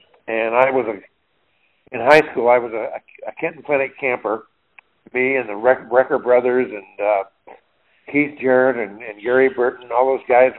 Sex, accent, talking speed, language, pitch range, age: male, American, 165 wpm, English, 115-135 Hz, 60-79